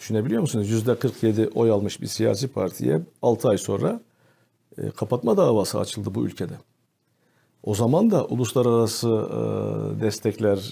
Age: 50-69